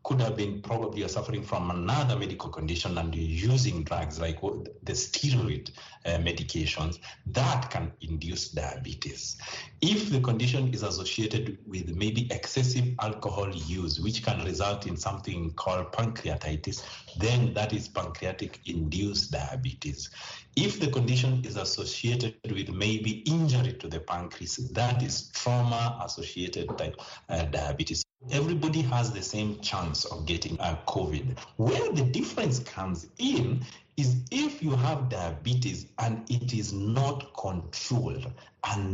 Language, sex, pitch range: English, male, 85-125 Hz